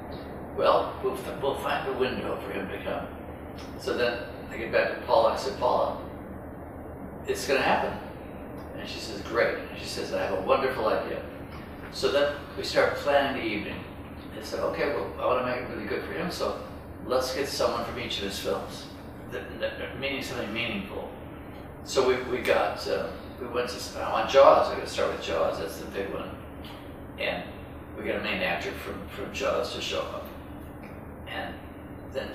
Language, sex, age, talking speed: English, male, 60-79, 185 wpm